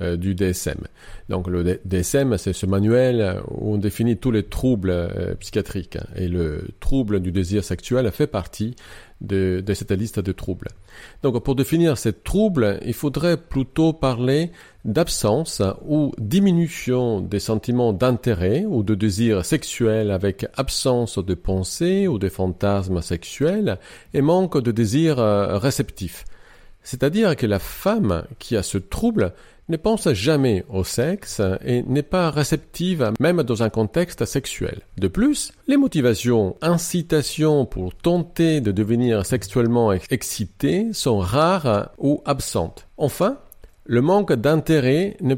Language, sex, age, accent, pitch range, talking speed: French, male, 40-59, French, 100-150 Hz, 135 wpm